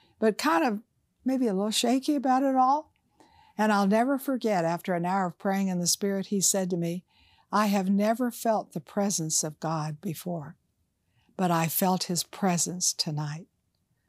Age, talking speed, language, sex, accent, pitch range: 60-79, 175 wpm, English, female, American, 170-215 Hz